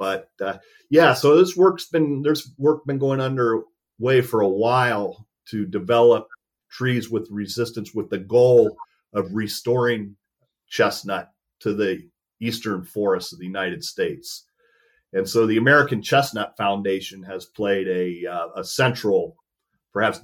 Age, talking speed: 40-59, 140 wpm